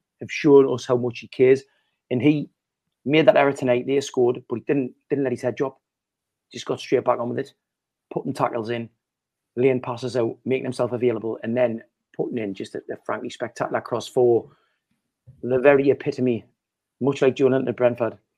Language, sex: English, male